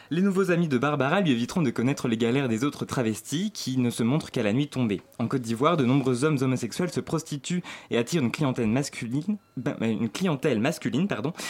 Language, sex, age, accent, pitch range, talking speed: French, male, 20-39, French, 120-155 Hz, 215 wpm